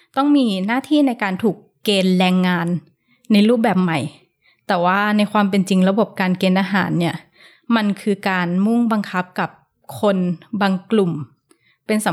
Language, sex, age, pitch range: Thai, female, 20-39, 185-230 Hz